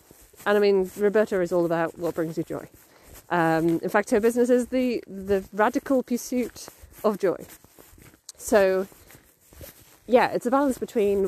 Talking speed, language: 155 wpm, English